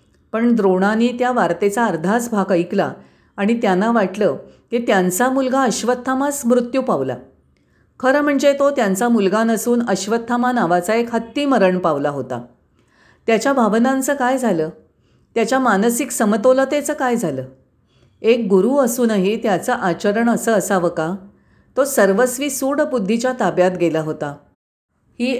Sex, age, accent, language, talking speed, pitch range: female, 50-69, native, Marathi, 125 wpm, 190-250 Hz